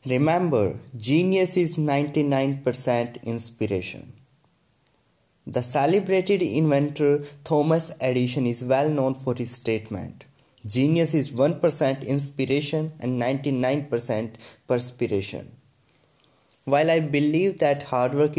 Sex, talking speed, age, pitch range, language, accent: male, 95 wpm, 20-39, 125-150 Hz, English, Indian